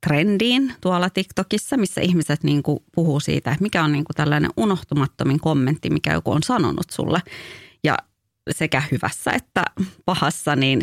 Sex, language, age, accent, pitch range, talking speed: female, English, 30-49, Finnish, 140-175 Hz, 145 wpm